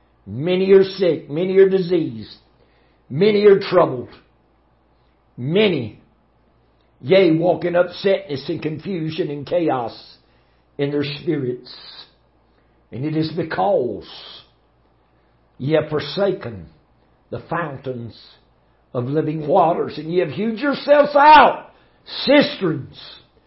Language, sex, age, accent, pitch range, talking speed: English, male, 60-79, American, 145-215 Hz, 100 wpm